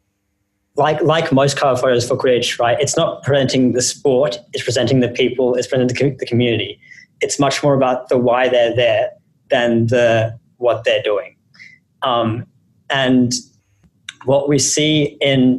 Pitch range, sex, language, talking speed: 120-140 Hz, male, English, 160 wpm